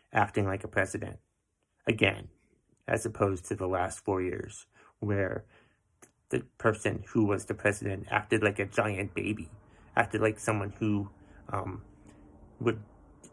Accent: American